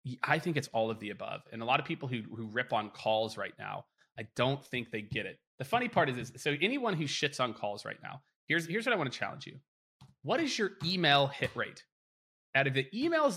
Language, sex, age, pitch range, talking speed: English, male, 30-49, 120-185 Hz, 250 wpm